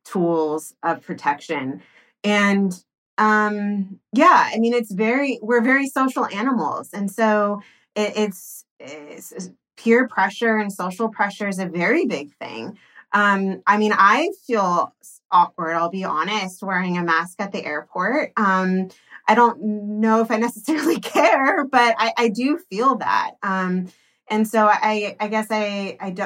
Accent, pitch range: American, 180-230 Hz